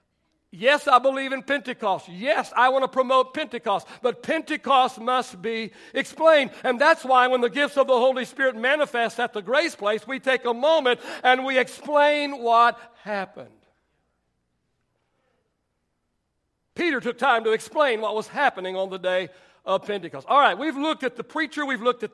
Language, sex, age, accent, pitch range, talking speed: English, male, 60-79, American, 205-270 Hz, 170 wpm